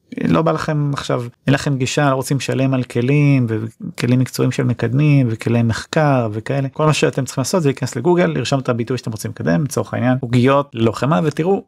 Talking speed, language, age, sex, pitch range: 195 wpm, Hebrew, 30-49, male, 125-155 Hz